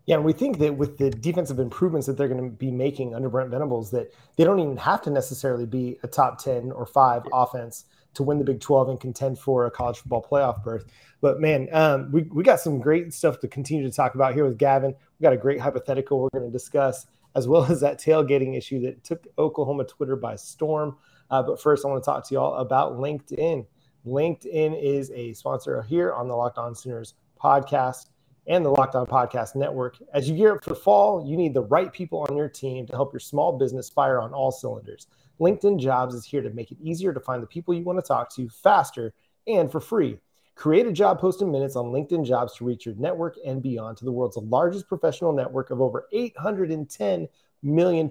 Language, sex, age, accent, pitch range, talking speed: English, male, 30-49, American, 125-155 Hz, 225 wpm